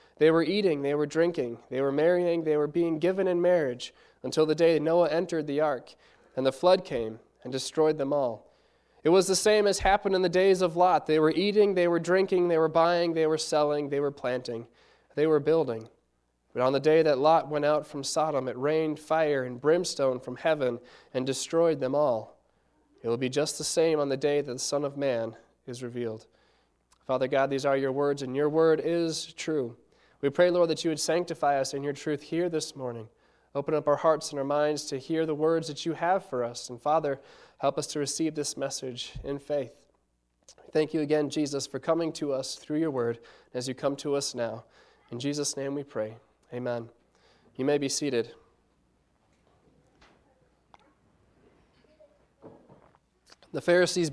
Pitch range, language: 135-165 Hz, English